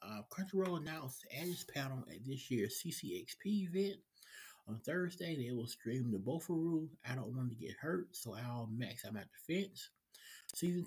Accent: American